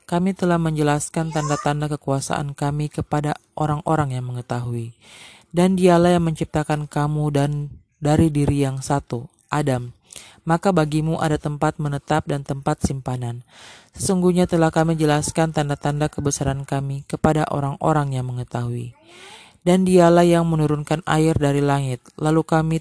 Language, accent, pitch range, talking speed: Indonesian, native, 140-160 Hz, 130 wpm